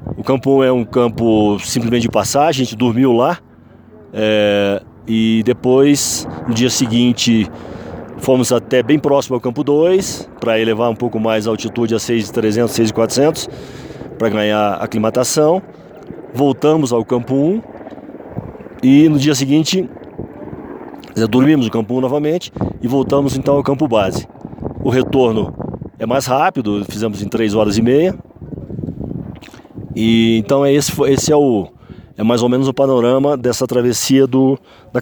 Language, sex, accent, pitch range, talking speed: Portuguese, male, Brazilian, 110-135 Hz, 150 wpm